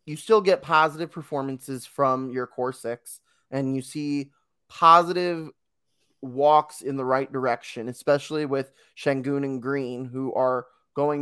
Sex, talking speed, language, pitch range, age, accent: male, 140 wpm, English, 130-160 Hz, 20-39, American